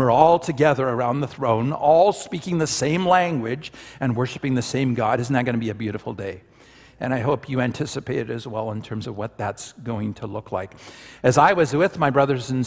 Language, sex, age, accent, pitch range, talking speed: English, male, 50-69, American, 115-140 Hz, 225 wpm